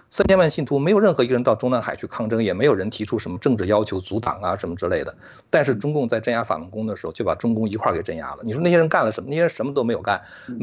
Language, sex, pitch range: Chinese, male, 110-150 Hz